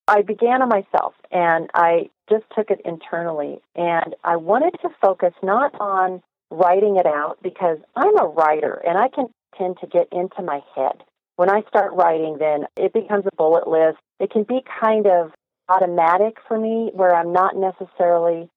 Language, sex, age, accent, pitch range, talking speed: English, female, 40-59, American, 170-220 Hz, 180 wpm